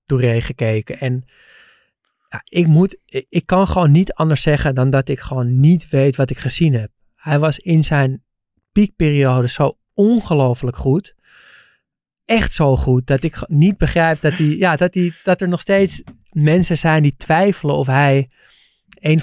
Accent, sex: Dutch, male